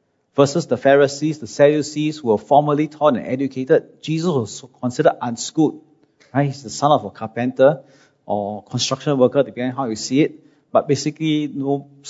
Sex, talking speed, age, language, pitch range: male, 170 wpm, 40-59, English, 125-155 Hz